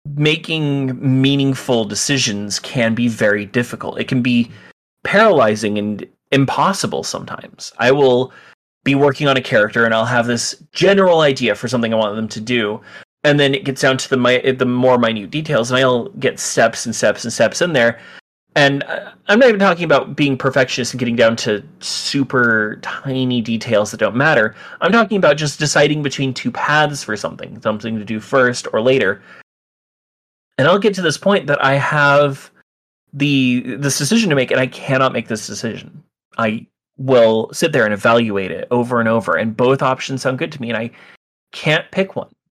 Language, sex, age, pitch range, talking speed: English, male, 30-49, 115-150 Hz, 185 wpm